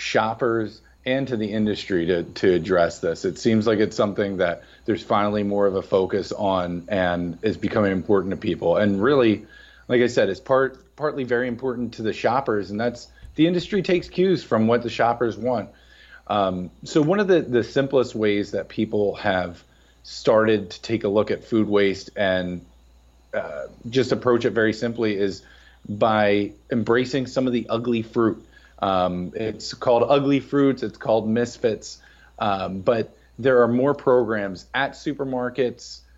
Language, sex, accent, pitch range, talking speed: English, male, American, 100-125 Hz, 170 wpm